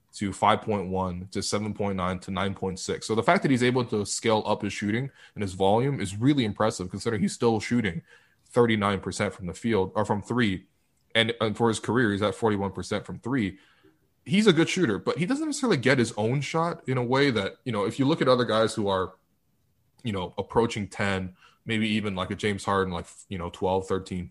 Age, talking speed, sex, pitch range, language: 20-39, 210 wpm, male, 95-125 Hz, English